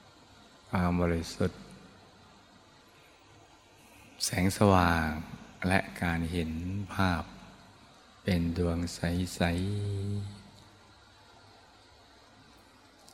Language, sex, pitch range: Thai, male, 85-100 Hz